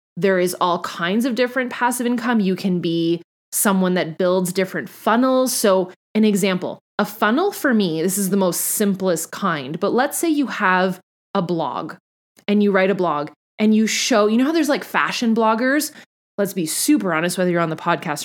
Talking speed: 195 wpm